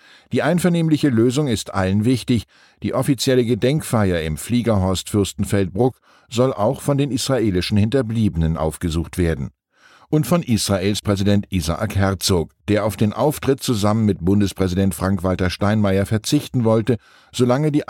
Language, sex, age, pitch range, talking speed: German, male, 10-29, 95-125 Hz, 130 wpm